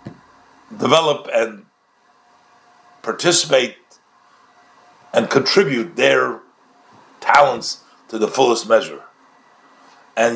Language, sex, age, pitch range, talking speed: English, male, 60-79, 165-210 Hz, 70 wpm